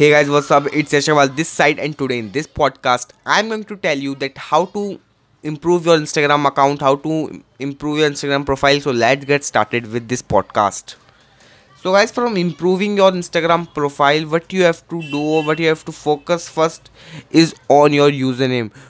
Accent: native